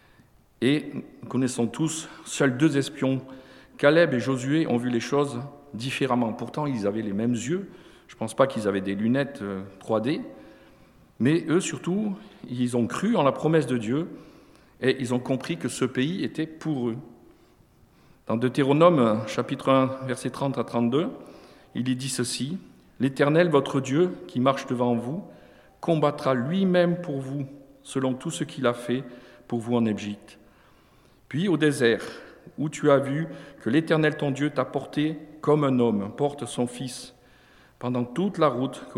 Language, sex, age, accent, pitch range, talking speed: French, male, 50-69, French, 115-140 Hz, 170 wpm